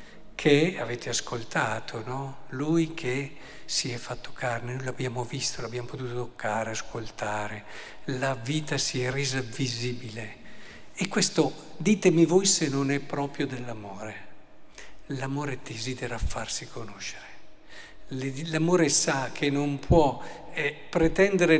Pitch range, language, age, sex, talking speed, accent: 130-160 Hz, Italian, 50-69, male, 115 wpm, native